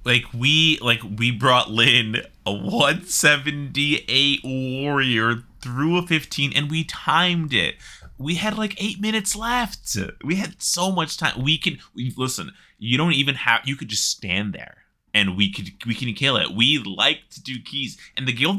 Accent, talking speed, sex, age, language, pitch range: American, 185 wpm, male, 20-39, English, 110-155 Hz